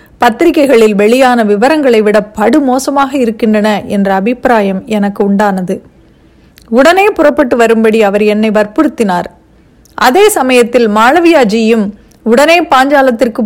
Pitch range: 220-275 Hz